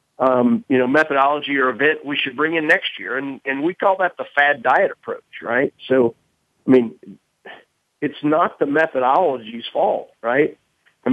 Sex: male